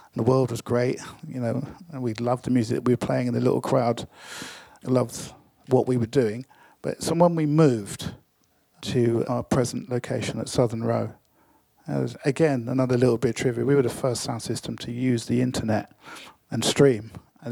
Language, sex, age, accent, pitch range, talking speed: English, male, 50-69, British, 120-155 Hz, 195 wpm